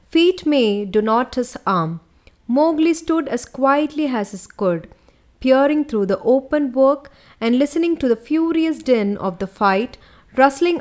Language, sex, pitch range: English, female, 200-275 Hz